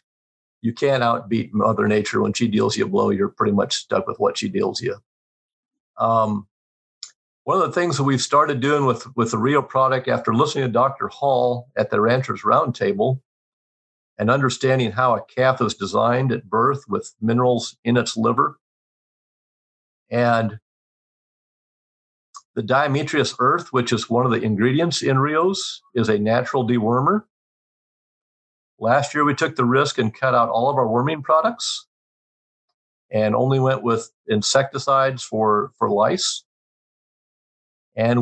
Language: English